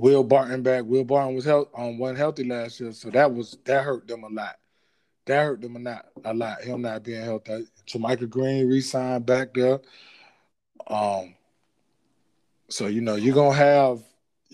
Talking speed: 180 wpm